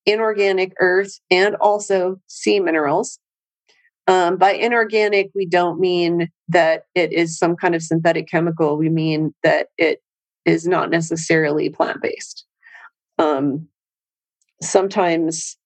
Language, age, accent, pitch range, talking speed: English, 30-49, American, 165-205 Hz, 110 wpm